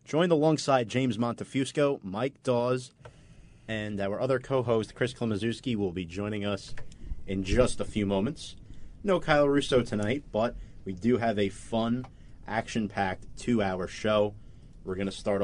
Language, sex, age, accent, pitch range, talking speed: English, male, 30-49, American, 95-120 Hz, 150 wpm